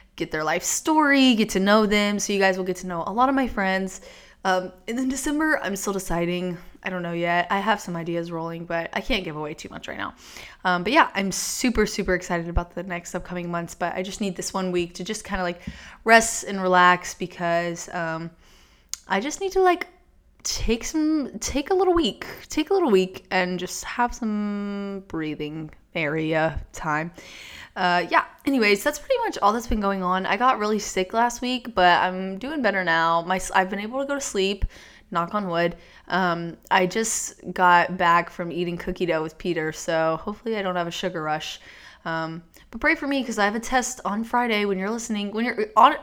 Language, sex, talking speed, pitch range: English, female, 215 wpm, 175-225 Hz